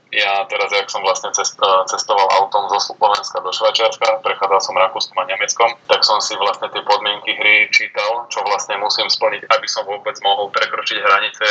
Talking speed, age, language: 180 wpm, 20-39, Slovak